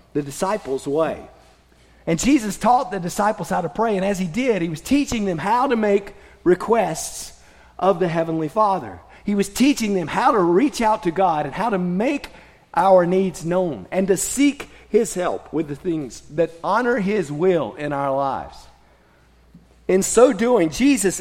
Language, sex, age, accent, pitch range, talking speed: English, male, 40-59, American, 165-215 Hz, 180 wpm